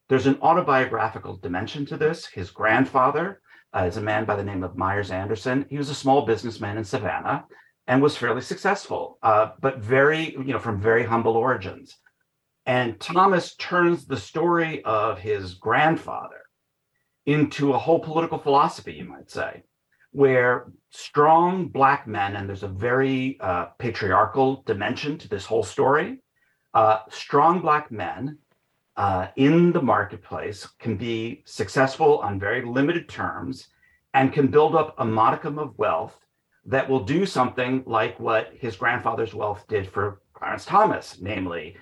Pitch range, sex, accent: 110-150 Hz, male, American